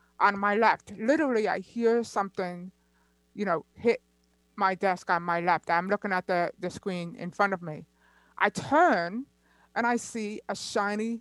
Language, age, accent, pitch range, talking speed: English, 50-69, American, 175-235 Hz, 170 wpm